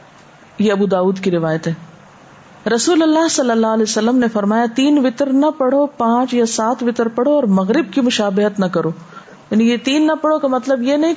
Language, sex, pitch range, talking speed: Urdu, female, 205-275 Hz, 205 wpm